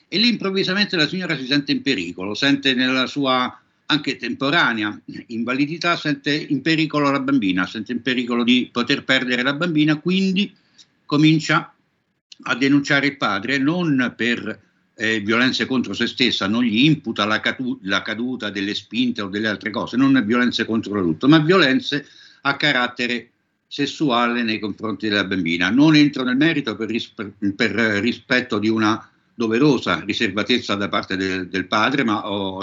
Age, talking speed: 60-79, 155 wpm